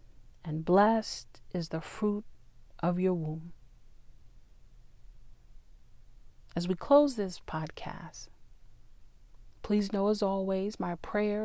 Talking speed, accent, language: 100 wpm, American, English